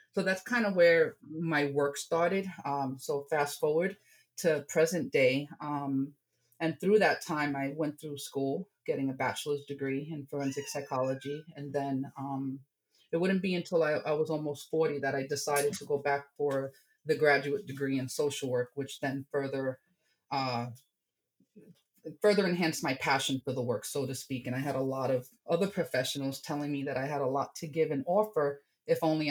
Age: 30-49